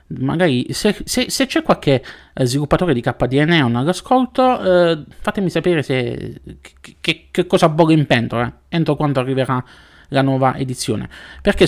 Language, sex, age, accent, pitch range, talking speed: Italian, male, 20-39, native, 120-175 Hz, 150 wpm